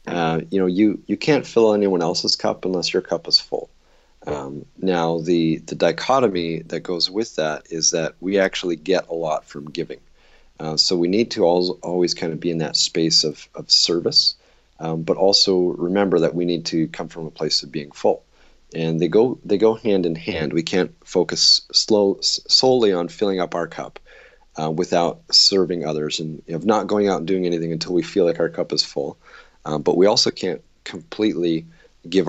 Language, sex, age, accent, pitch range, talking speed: English, male, 40-59, American, 80-95 Hz, 205 wpm